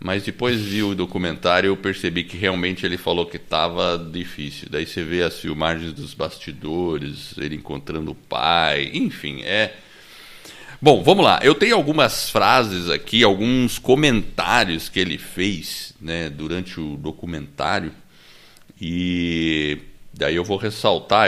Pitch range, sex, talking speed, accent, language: 85-105 Hz, male, 140 wpm, Brazilian, Portuguese